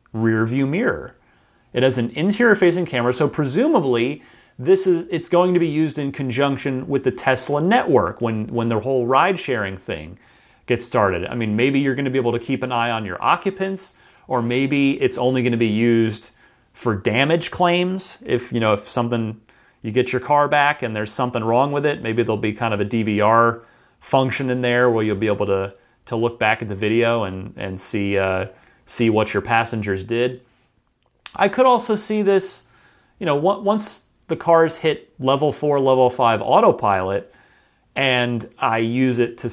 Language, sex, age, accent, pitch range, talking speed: English, male, 30-49, American, 110-145 Hz, 190 wpm